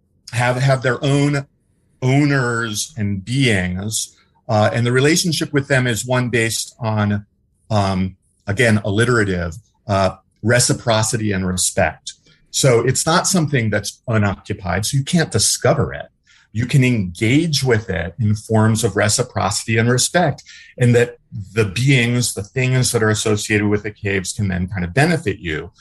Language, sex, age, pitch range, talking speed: English, male, 40-59, 100-130 Hz, 150 wpm